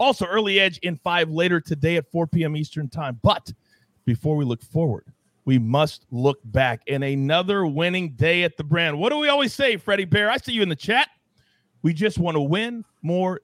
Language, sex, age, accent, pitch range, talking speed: English, male, 40-59, American, 135-185 Hz, 210 wpm